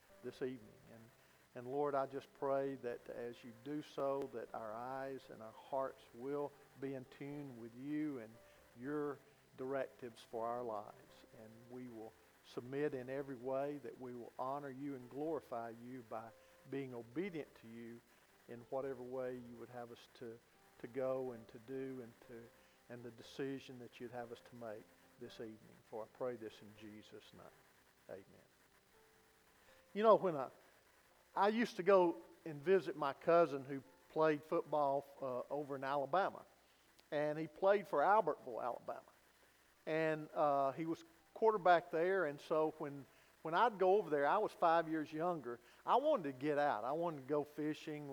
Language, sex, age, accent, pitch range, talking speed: English, male, 50-69, American, 125-160 Hz, 175 wpm